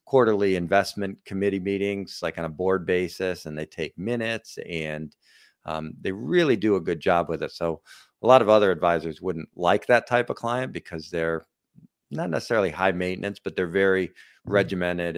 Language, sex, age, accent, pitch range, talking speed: English, male, 40-59, American, 80-95 Hz, 180 wpm